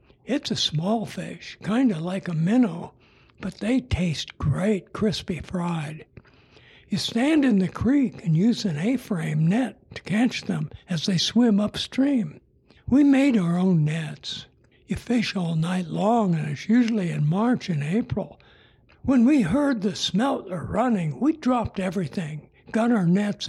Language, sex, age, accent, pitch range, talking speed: English, male, 60-79, American, 160-225 Hz, 160 wpm